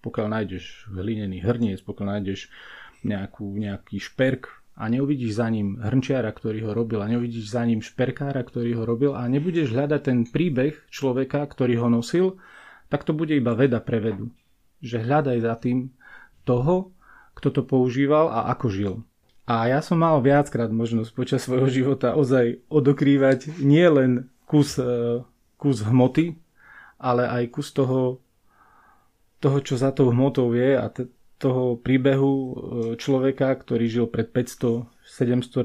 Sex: male